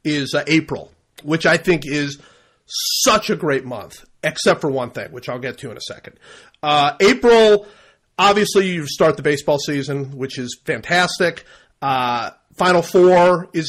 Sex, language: male, English